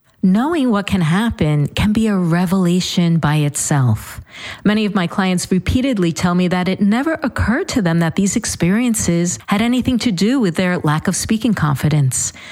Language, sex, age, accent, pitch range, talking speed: English, female, 40-59, American, 145-205 Hz, 175 wpm